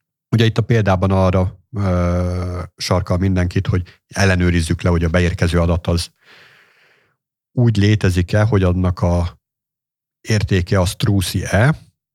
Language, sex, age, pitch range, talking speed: Hungarian, male, 50-69, 90-115 Hz, 115 wpm